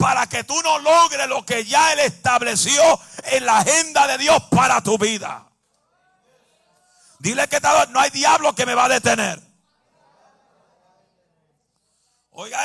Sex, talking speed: male, 140 wpm